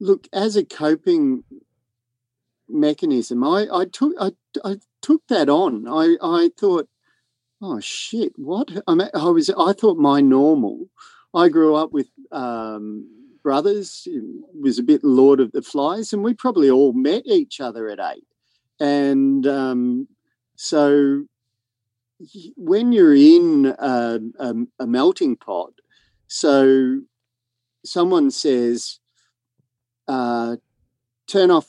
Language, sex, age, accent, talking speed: English, male, 40-59, Australian, 125 wpm